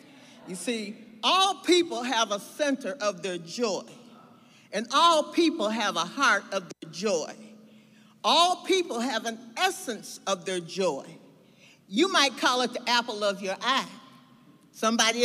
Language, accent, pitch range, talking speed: English, American, 225-280 Hz, 145 wpm